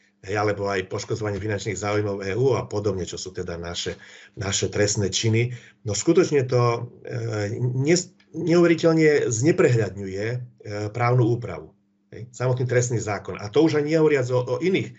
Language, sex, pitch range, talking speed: Slovak, male, 105-125 Hz, 145 wpm